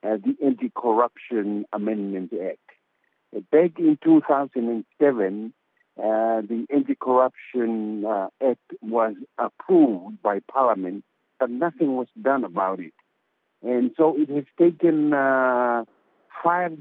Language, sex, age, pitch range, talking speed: English, male, 60-79, 110-150 Hz, 105 wpm